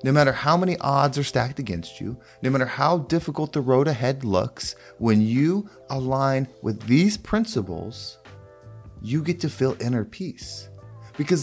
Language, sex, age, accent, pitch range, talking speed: English, male, 30-49, American, 115-150 Hz, 160 wpm